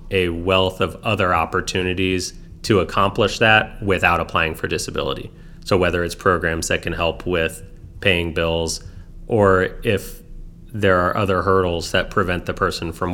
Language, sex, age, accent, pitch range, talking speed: English, male, 30-49, American, 90-105 Hz, 150 wpm